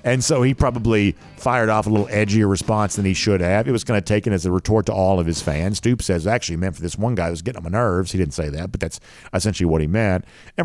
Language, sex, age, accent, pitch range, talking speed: English, male, 50-69, American, 95-130 Hz, 295 wpm